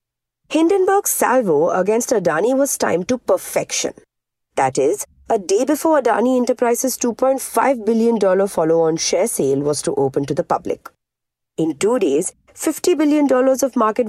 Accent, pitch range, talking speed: Indian, 160-260 Hz, 145 wpm